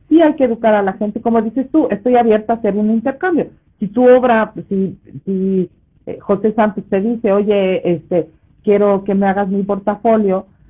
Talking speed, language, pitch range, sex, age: 185 wpm, Spanish, 195-250 Hz, female, 50-69